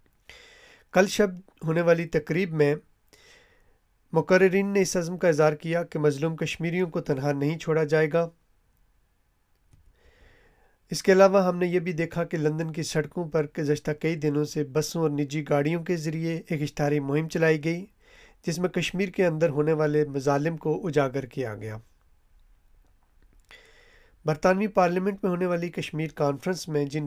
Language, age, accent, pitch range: English, 30-49, Indian, 150-180 Hz